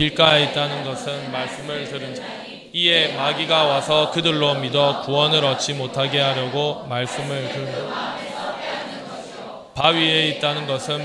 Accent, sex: native, male